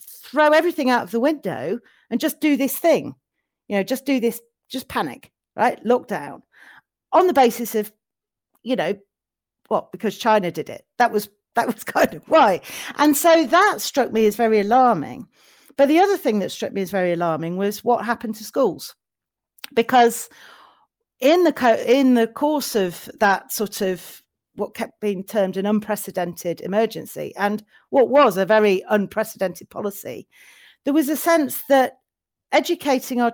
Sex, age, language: female, 40-59, English